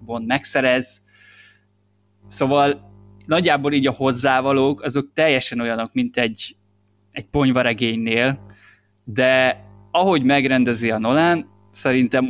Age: 20-39